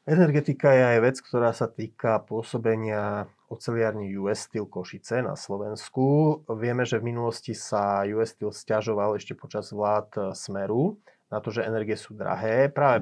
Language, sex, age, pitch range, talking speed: Slovak, male, 30-49, 110-135 Hz, 150 wpm